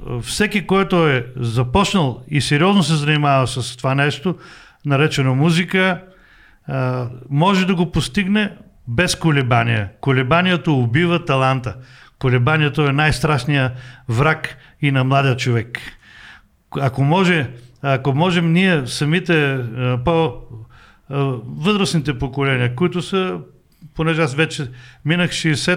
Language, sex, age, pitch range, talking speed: Bulgarian, male, 50-69, 140-185 Hz, 105 wpm